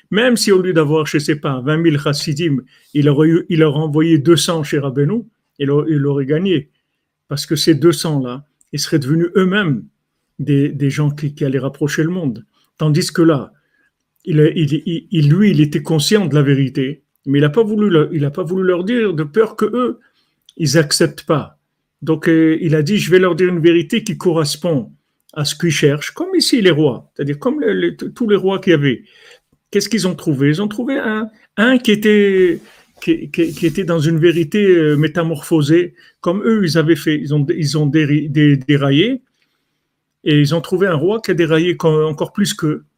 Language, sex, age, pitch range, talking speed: French, male, 50-69, 150-185 Hz, 200 wpm